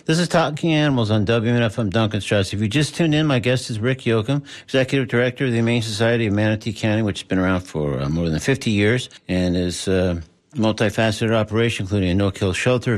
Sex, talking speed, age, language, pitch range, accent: male, 215 wpm, 50-69, English, 105-130 Hz, American